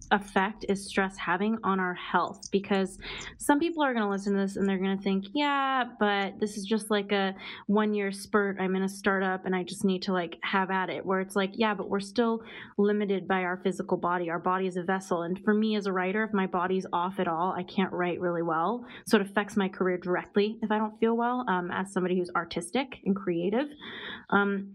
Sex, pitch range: female, 185-205 Hz